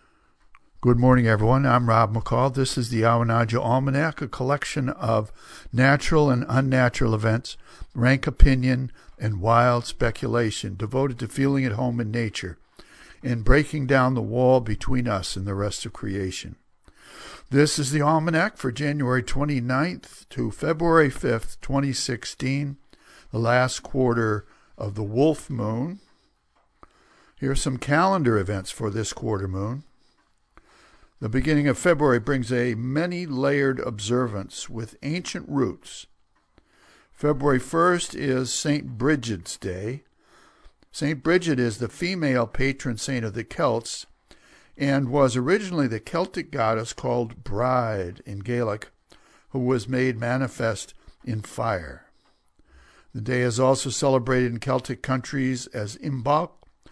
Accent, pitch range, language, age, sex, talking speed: American, 115-140 Hz, English, 60-79, male, 130 wpm